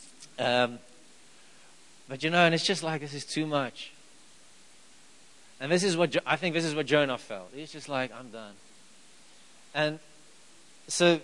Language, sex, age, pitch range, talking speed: English, male, 40-59, 140-170 Hz, 160 wpm